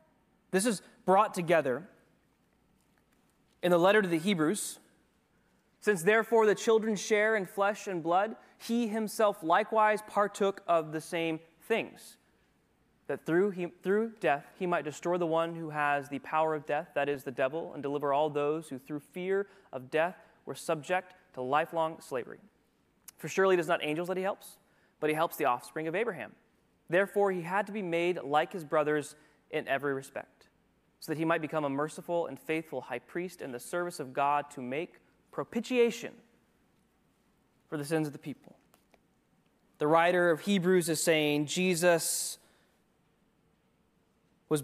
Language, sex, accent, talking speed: English, male, American, 165 wpm